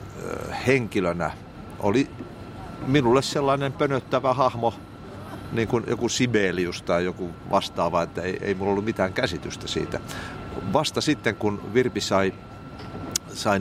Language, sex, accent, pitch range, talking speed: Finnish, male, native, 90-110 Hz, 120 wpm